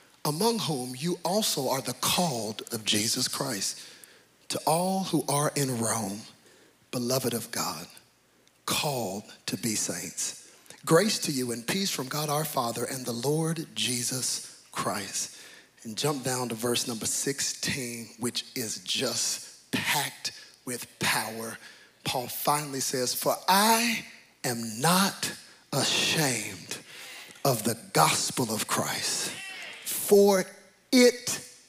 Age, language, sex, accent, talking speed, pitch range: 40-59, English, male, American, 125 wpm, 125-215 Hz